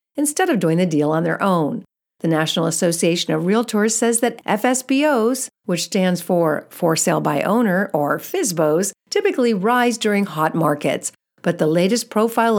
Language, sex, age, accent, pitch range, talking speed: English, female, 50-69, American, 165-235 Hz, 160 wpm